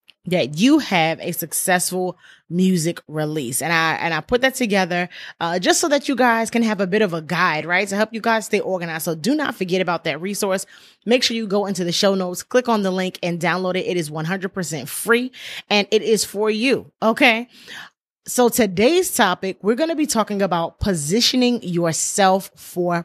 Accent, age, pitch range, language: American, 20-39, 175-225 Hz, English